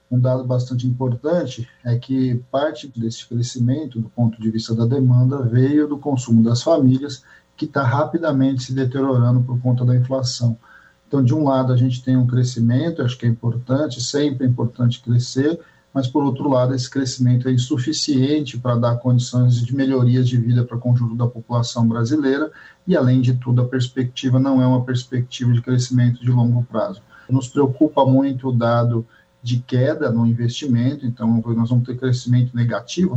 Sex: male